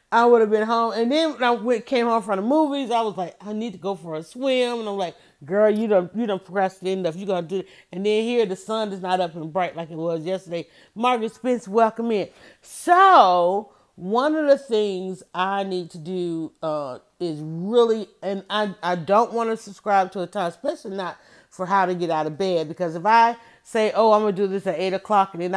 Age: 40-59